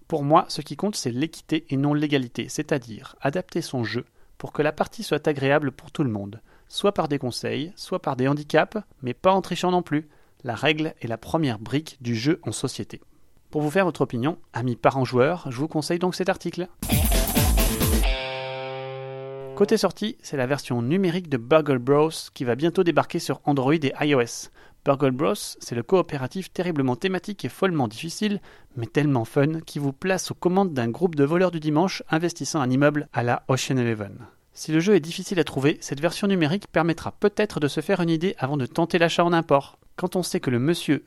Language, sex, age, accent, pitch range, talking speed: French, male, 30-49, French, 130-175 Hz, 205 wpm